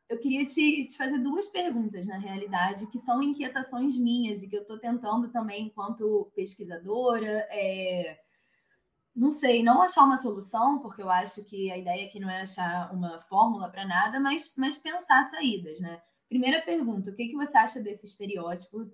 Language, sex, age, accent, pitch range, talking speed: Portuguese, female, 20-39, Brazilian, 200-265 Hz, 180 wpm